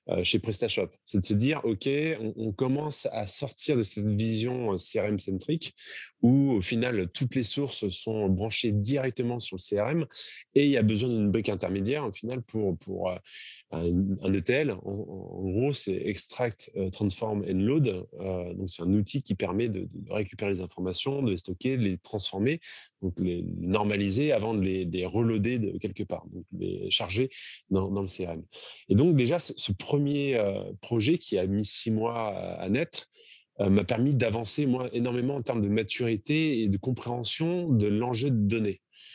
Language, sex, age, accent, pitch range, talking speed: French, male, 20-39, French, 95-125 Hz, 180 wpm